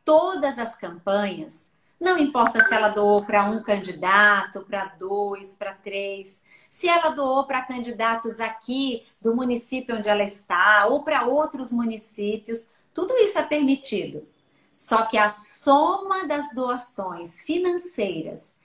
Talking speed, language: 130 wpm, Portuguese